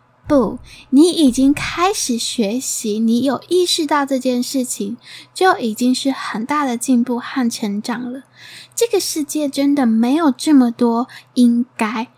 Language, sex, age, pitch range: Chinese, female, 10-29, 235-300 Hz